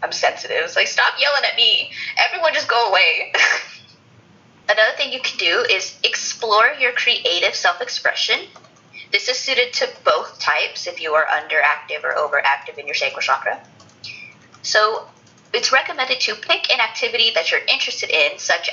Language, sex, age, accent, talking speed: English, female, 20-39, American, 165 wpm